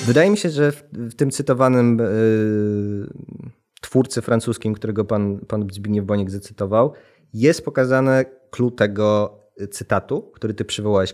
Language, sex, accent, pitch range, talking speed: Polish, male, native, 110-130 Hz, 130 wpm